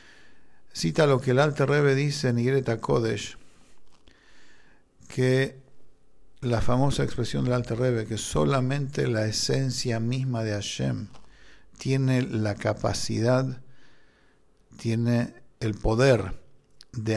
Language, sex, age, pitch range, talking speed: English, male, 50-69, 115-140 Hz, 110 wpm